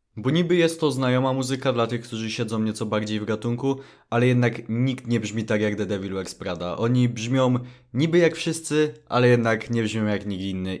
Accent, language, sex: native, Polish, male